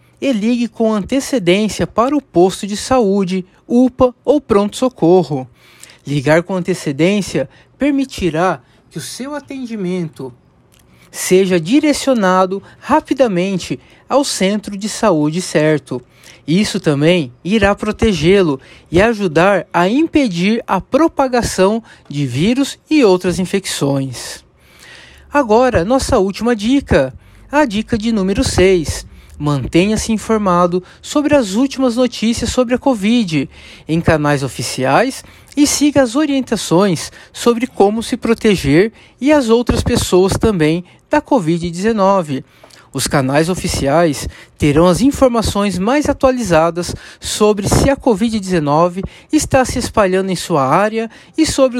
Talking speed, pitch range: 115 wpm, 170-250 Hz